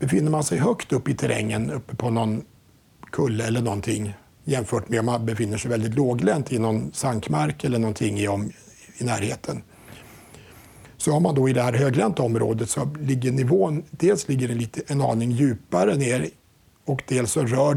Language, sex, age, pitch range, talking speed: Swedish, male, 60-79, 110-140 Hz, 175 wpm